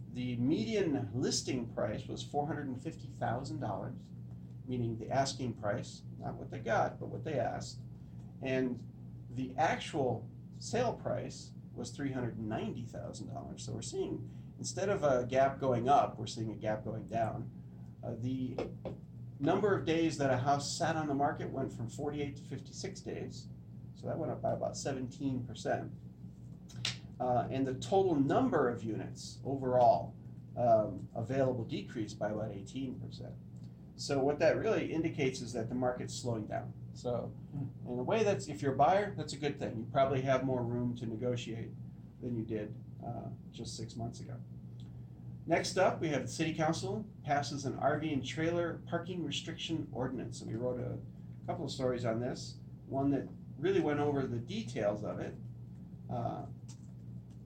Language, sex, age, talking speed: English, male, 40-59, 160 wpm